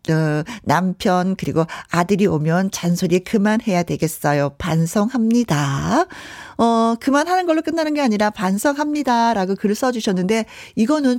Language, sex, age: Korean, female, 40-59